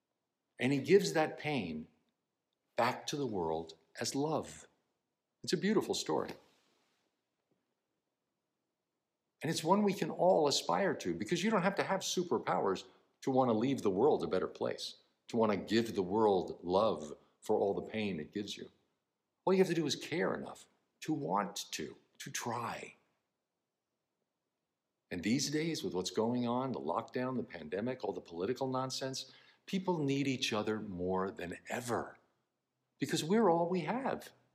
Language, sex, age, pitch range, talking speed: English, male, 60-79, 110-185 Hz, 160 wpm